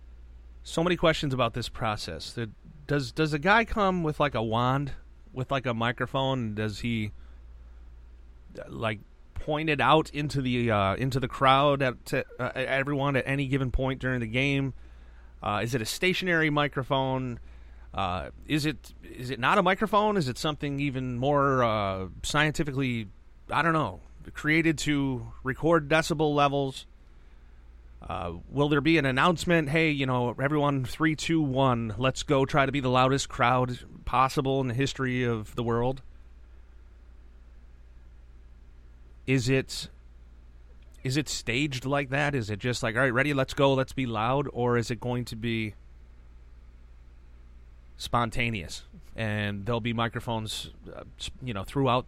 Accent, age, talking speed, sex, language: American, 30-49, 155 wpm, male, English